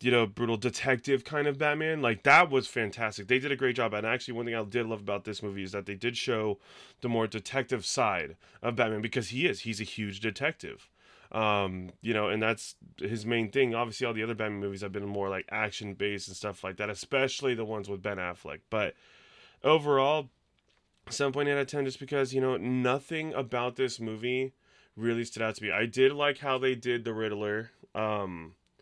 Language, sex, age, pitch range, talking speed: English, male, 20-39, 100-125 Hz, 210 wpm